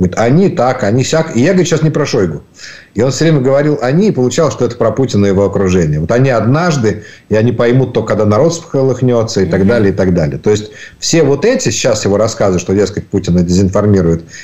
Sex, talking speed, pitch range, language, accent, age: male, 225 wpm, 100-140 Hz, Ukrainian, native, 50-69